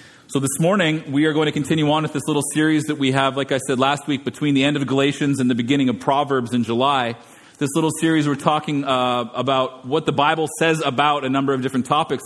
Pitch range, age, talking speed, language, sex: 130-150 Hz, 30-49, 245 wpm, English, male